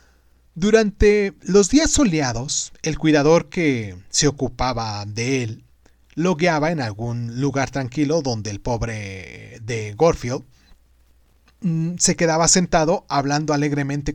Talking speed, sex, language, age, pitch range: 115 wpm, male, Spanish, 30-49, 120-170 Hz